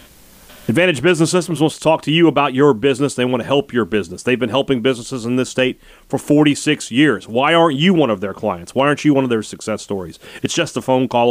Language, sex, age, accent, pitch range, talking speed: English, male, 30-49, American, 115-155 Hz, 250 wpm